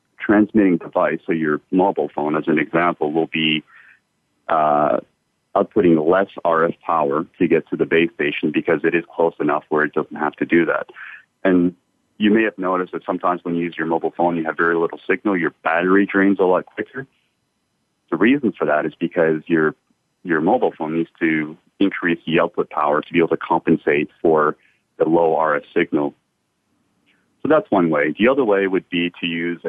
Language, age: English, 30-49